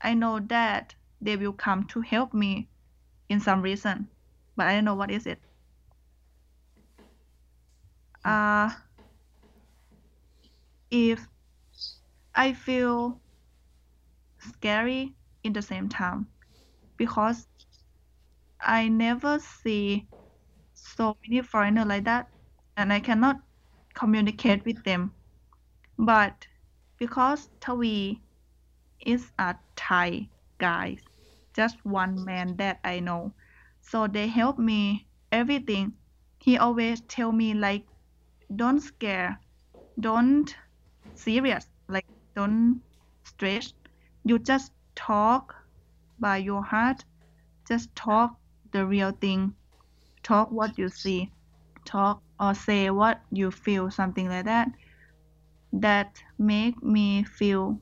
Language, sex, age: English, female, 20-39